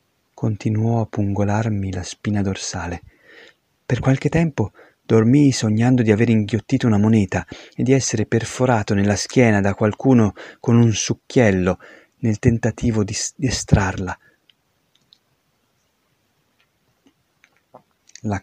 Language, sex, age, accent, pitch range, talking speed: Italian, male, 30-49, native, 100-120 Hz, 105 wpm